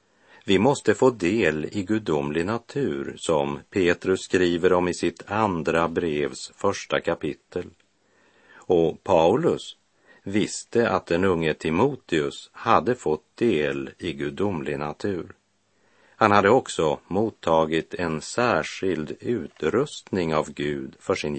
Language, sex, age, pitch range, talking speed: Swedish, male, 50-69, 80-105 Hz, 115 wpm